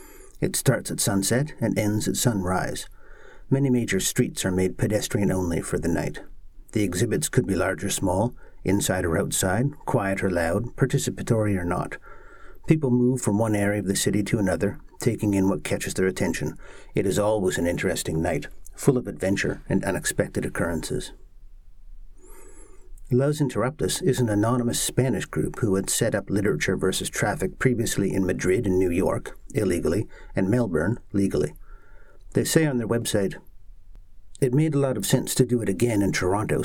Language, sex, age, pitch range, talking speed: English, male, 50-69, 95-125 Hz, 170 wpm